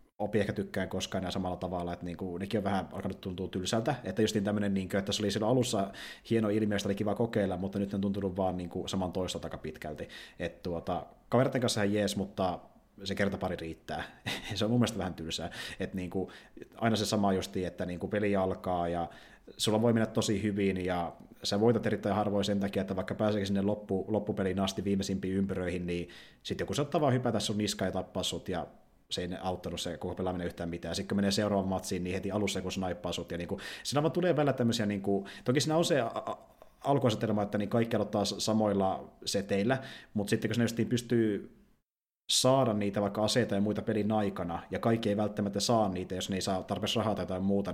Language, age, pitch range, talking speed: Finnish, 30-49, 95-110 Hz, 205 wpm